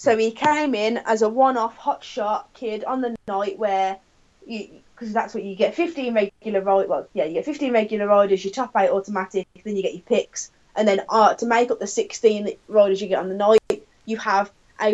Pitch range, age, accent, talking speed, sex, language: 200-245 Hz, 10-29, British, 220 wpm, female, English